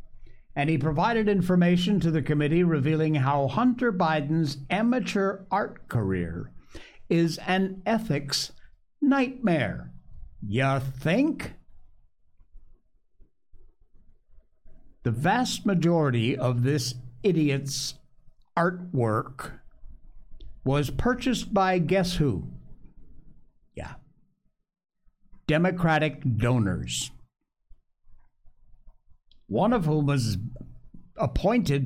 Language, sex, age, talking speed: English, male, 60-79, 75 wpm